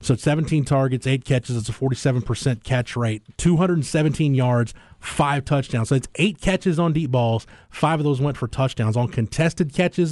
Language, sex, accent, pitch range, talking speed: English, male, American, 120-150 Hz, 180 wpm